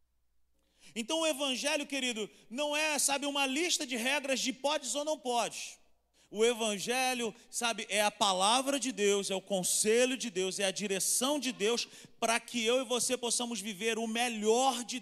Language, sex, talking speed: Portuguese, male, 175 wpm